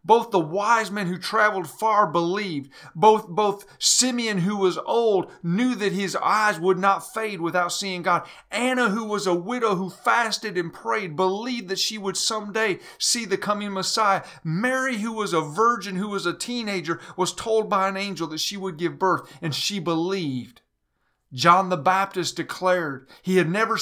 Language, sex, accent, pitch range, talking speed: English, male, American, 175-215 Hz, 180 wpm